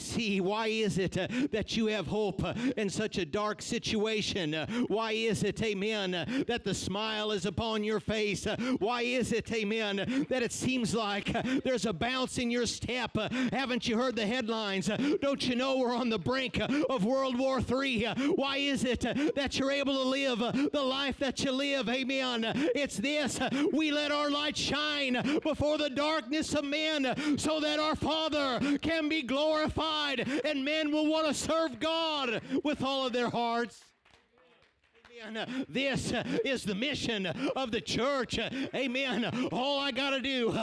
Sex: male